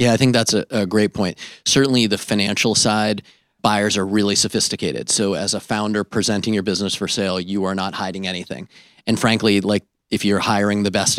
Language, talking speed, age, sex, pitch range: English, 205 wpm, 30-49, male, 95-110 Hz